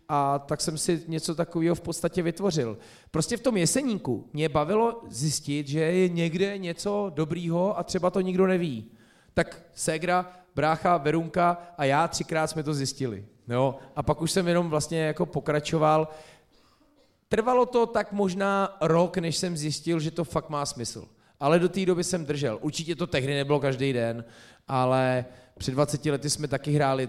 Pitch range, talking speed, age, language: 130-160 Hz, 170 wpm, 30-49, Czech